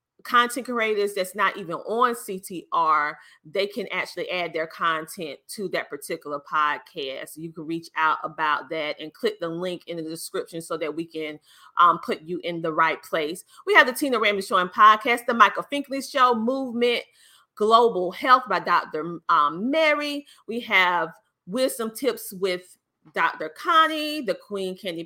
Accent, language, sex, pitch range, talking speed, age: American, English, female, 180-285 Hz, 170 wpm, 30-49